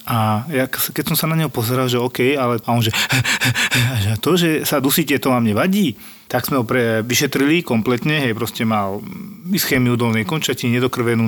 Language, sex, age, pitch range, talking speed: Slovak, male, 40-59, 120-140 Hz, 185 wpm